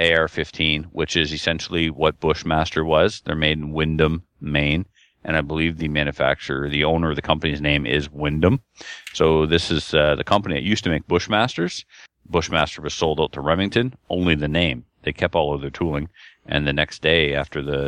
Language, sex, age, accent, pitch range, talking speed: English, male, 40-59, American, 75-80 Hz, 190 wpm